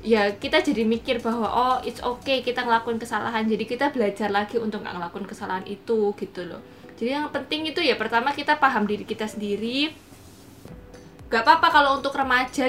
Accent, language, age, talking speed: native, Indonesian, 20-39, 180 wpm